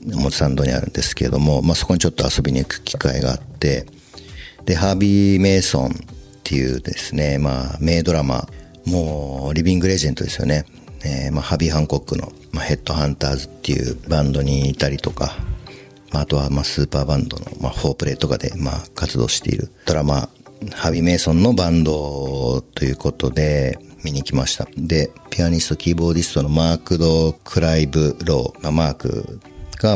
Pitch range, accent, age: 70-85 Hz, native, 50-69